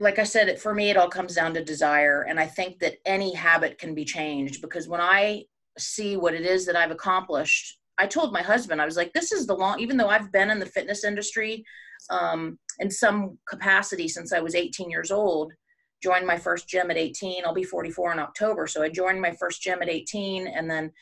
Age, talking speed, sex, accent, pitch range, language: 30-49, 230 wpm, female, American, 160-195 Hz, English